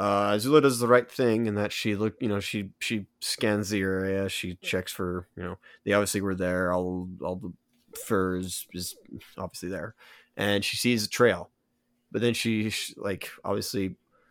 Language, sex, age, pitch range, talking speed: English, male, 30-49, 95-120 Hz, 180 wpm